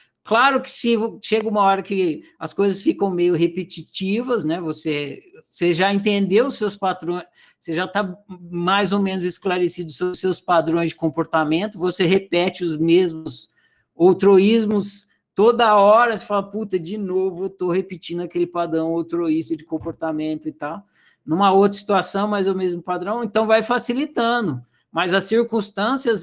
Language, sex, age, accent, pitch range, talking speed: Portuguese, male, 60-79, Brazilian, 175-230 Hz, 160 wpm